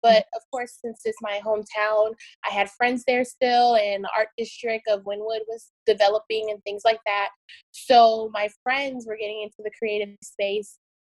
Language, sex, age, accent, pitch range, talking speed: English, female, 20-39, American, 200-240 Hz, 180 wpm